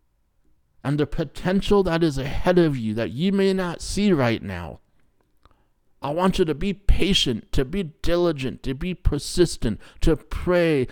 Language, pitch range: English, 100-160 Hz